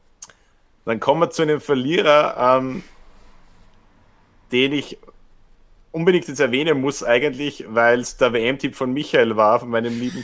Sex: male